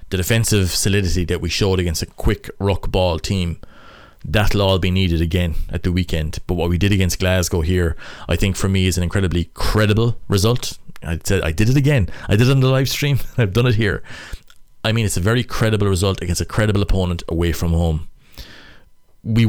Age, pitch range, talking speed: 20-39, 85-105 Hz, 205 wpm